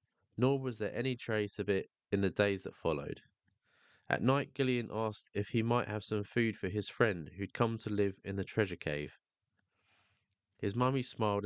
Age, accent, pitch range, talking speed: 20-39, British, 100-120 Hz, 190 wpm